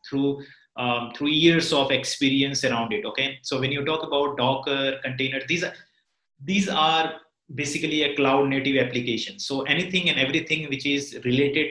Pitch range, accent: 130-160 Hz, Indian